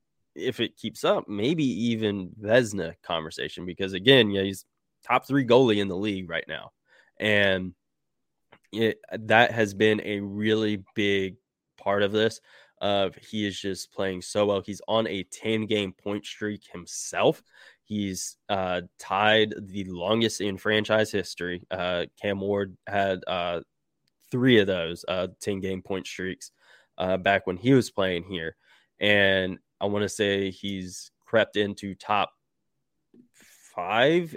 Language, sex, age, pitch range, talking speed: English, male, 20-39, 95-110 Hz, 145 wpm